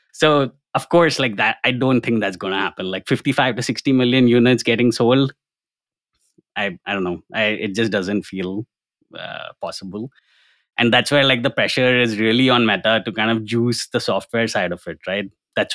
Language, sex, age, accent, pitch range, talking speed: English, male, 20-39, Indian, 100-125 Hz, 195 wpm